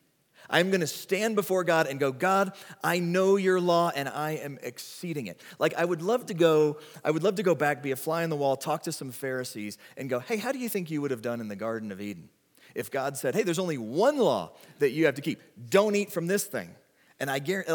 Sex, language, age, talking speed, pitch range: male, English, 30-49, 260 wpm, 120-180 Hz